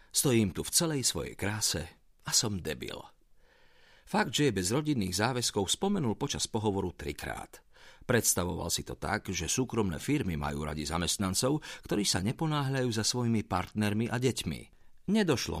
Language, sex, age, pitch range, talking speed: Slovak, male, 50-69, 85-120 Hz, 145 wpm